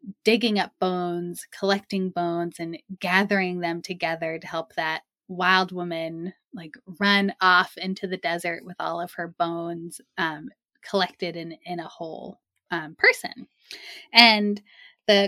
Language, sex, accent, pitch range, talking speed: English, female, American, 180-245 Hz, 140 wpm